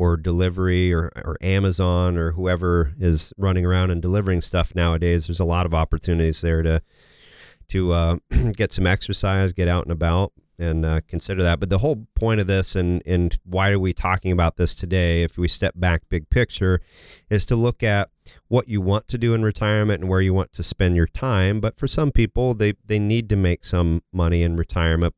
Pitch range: 85-100 Hz